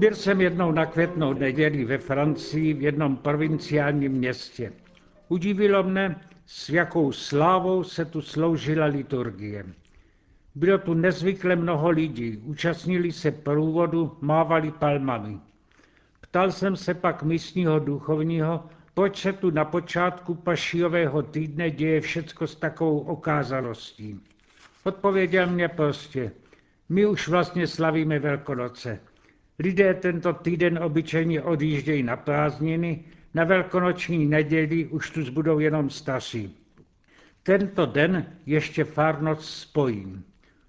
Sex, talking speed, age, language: male, 110 wpm, 70-89, Czech